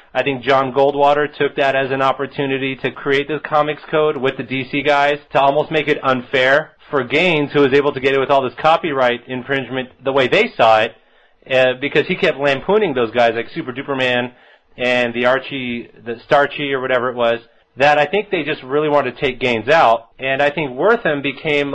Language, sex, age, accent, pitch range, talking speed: English, male, 30-49, American, 125-150 Hz, 210 wpm